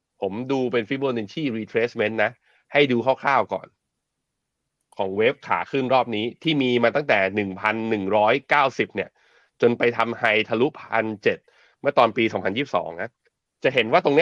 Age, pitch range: 30-49, 110-130 Hz